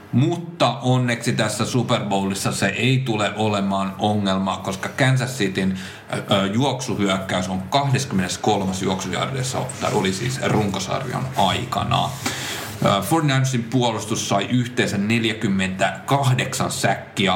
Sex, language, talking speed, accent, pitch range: male, Finnish, 95 wpm, native, 95-120 Hz